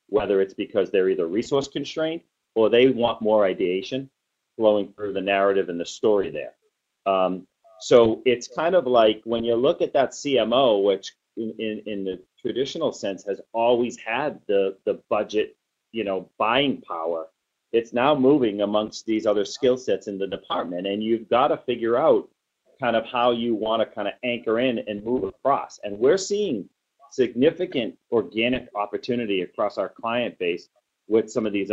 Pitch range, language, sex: 105-140 Hz, English, male